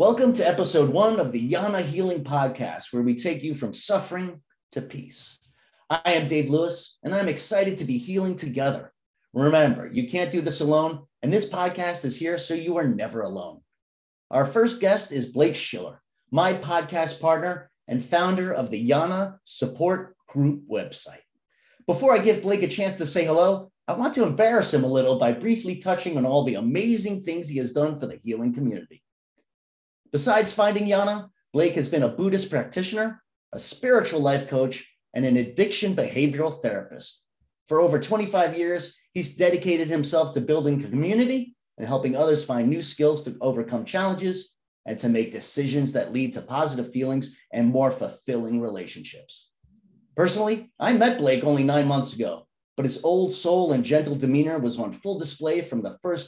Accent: American